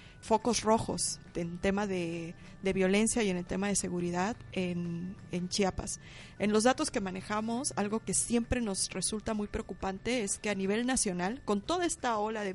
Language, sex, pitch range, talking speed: Spanish, female, 190-230 Hz, 180 wpm